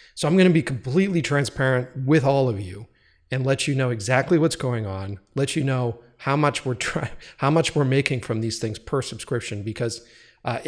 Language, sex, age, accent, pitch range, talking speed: English, male, 40-59, American, 115-145 Hz, 210 wpm